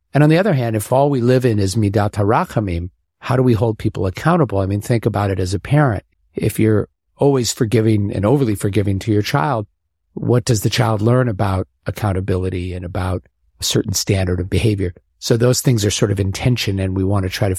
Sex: male